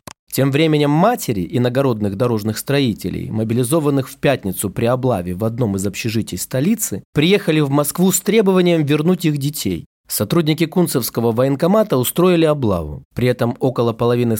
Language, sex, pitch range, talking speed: Russian, male, 115-165 Hz, 140 wpm